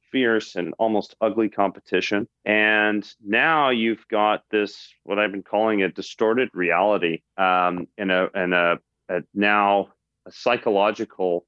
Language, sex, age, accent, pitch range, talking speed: English, male, 40-59, American, 95-115 Hz, 125 wpm